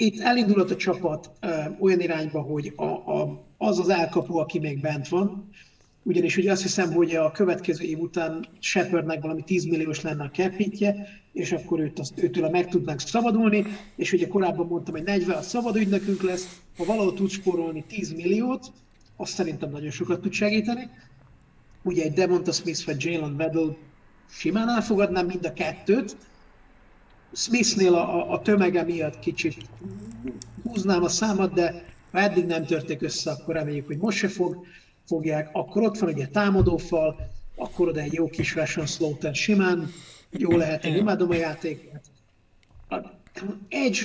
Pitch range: 160-195 Hz